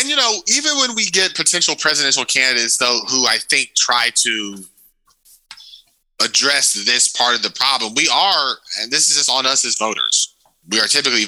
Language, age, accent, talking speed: English, 20-39, American, 185 wpm